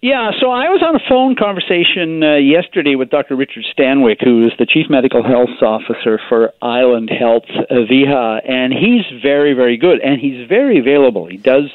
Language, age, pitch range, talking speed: English, 50-69, 115-180 Hz, 190 wpm